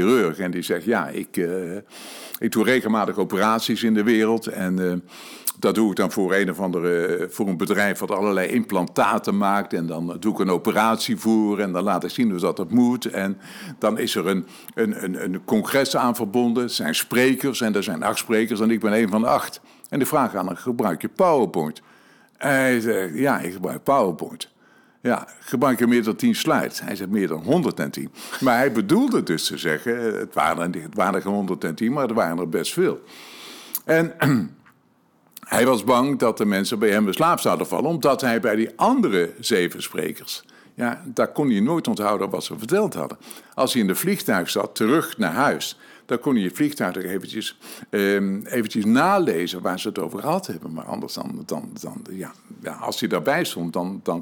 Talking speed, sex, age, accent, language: 205 wpm, male, 50-69, Dutch, Dutch